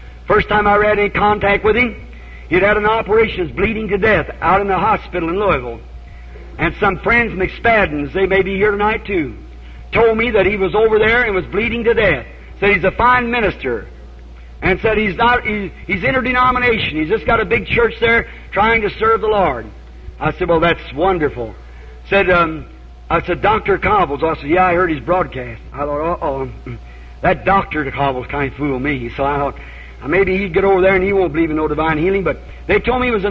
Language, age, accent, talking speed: English, 50-69, American, 220 wpm